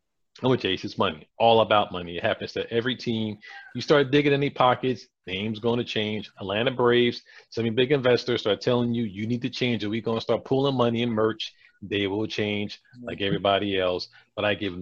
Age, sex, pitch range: 40-59, male, 100-120 Hz